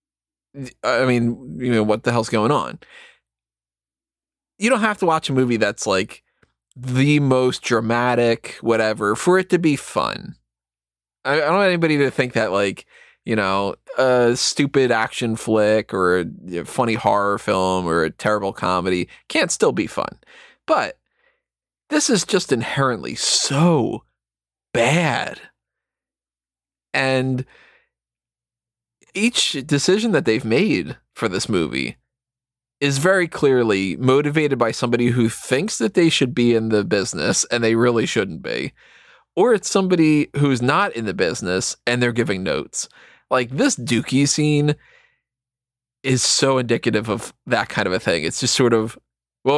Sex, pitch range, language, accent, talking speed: male, 110-145 Hz, English, American, 145 wpm